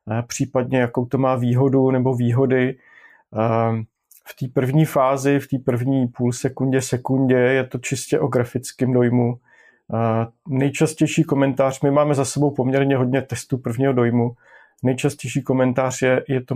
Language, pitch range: Slovak, 125-140 Hz